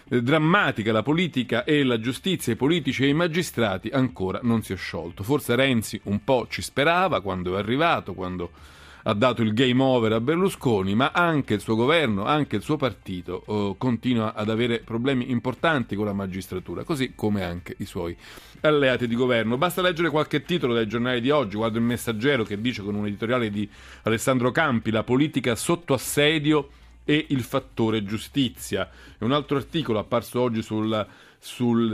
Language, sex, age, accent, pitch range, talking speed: Italian, male, 40-59, native, 110-140 Hz, 175 wpm